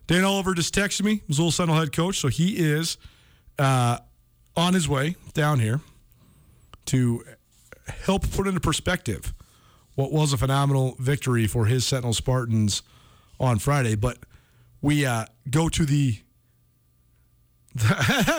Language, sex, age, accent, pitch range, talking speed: English, male, 30-49, American, 120-170 Hz, 135 wpm